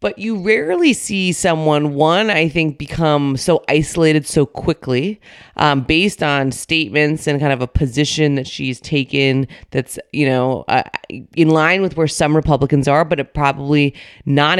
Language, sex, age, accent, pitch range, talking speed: English, female, 30-49, American, 140-175 Hz, 160 wpm